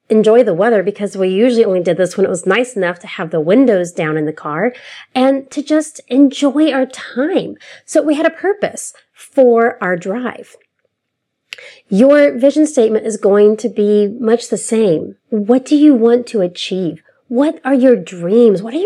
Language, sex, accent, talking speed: English, female, American, 185 wpm